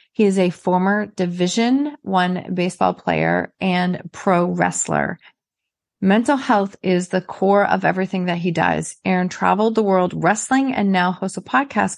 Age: 30-49